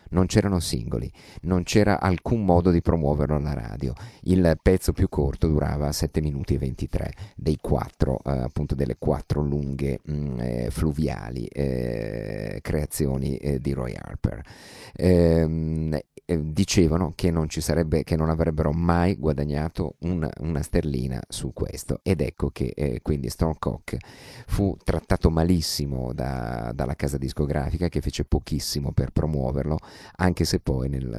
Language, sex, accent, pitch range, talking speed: Italian, male, native, 70-85 Hz, 140 wpm